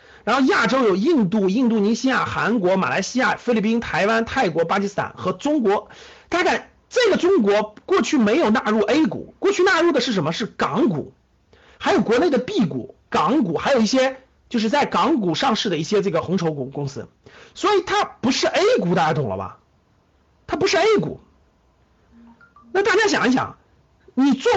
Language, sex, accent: Chinese, male, native